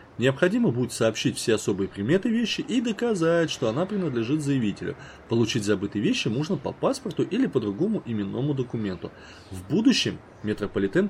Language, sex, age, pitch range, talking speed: Russian, male, 20-39, 105-140 Hz, 145 wpm